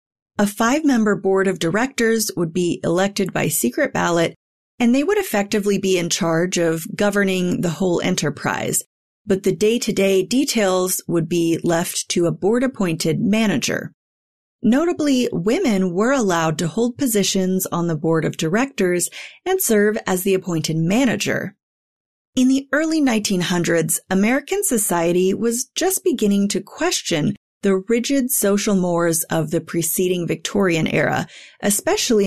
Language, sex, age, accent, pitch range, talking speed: English, female, 30-49, American, 175-230 Hz, 135 wpm